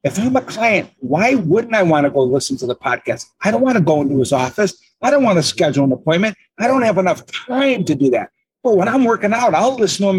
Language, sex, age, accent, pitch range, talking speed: English, male, 50-69, American, 140-190 Hz, 270 wpm